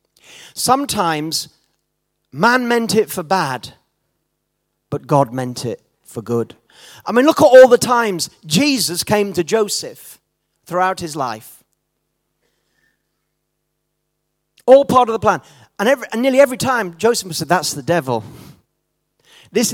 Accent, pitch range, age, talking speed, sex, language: British, 170-240 Hz, 40-59, 130 wpm, male, English